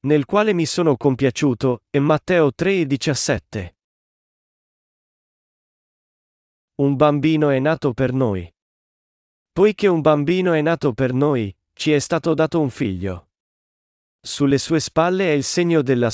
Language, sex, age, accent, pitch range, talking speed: Italian, male, 40-59, native, 110-155 Hz, 125 wpm